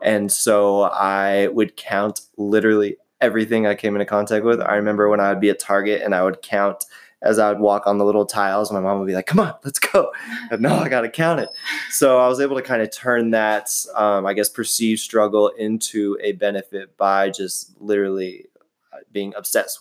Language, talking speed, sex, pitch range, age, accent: English, 210 wpm, male, 100-110 Hz, 20-39, American